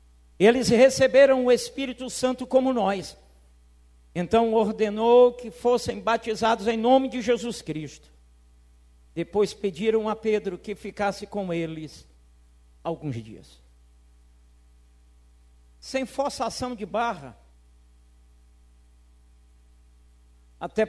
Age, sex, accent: 60-79, male, Brazilian